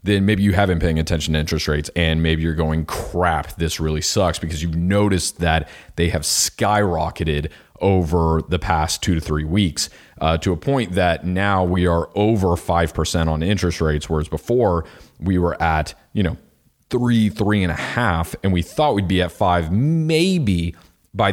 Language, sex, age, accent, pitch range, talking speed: English, male, 30-49, American, 80-100 Hz, 185 wpm